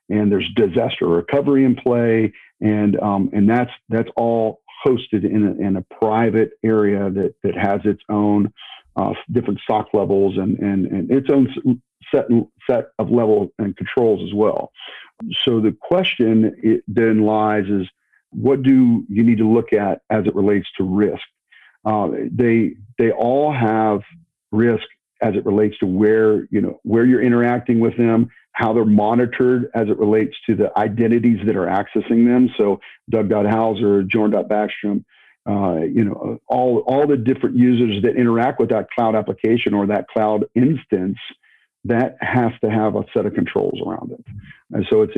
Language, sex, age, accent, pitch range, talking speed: English, male, 50-69, American, 105-120 Hz, 165 wpm